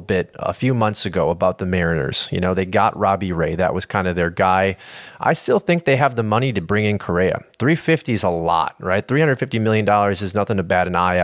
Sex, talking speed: male, 240 wpm